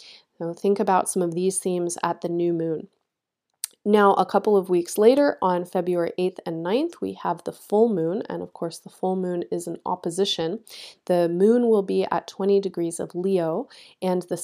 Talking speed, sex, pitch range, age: 190 wpm, female, 170-205 Hz, 30-49